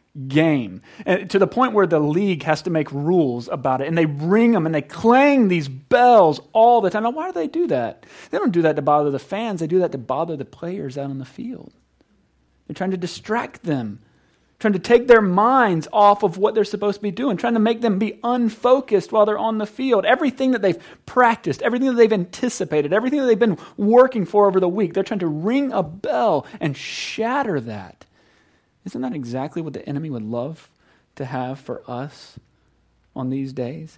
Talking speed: 210 wpm